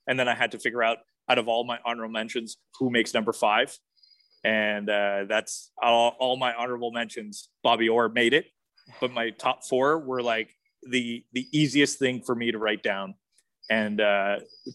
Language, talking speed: English, 185 wpm